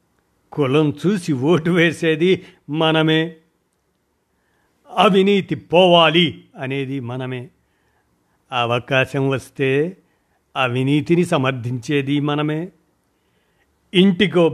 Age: 50-69